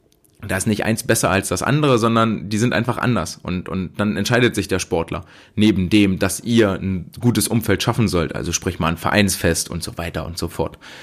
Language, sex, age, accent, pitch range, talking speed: German, male, 30-49, German, 95-120 Hz, 220 wpm